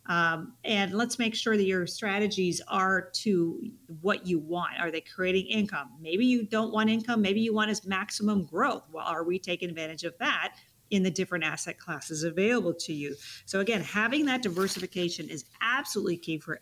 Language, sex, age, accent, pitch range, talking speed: English, female, 40-59, American, 165-205 Hz, 190 wpm